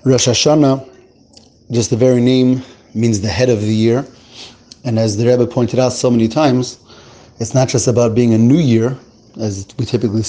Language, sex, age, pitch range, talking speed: English, male, 30-49, 110-130 Hz, 185 wpm